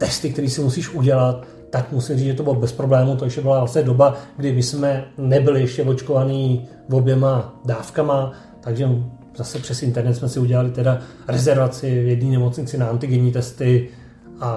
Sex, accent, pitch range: male, native, 125-150 Hz